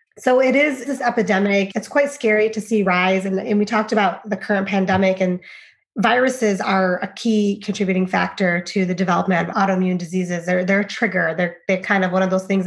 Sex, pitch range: female, 185-220 Hz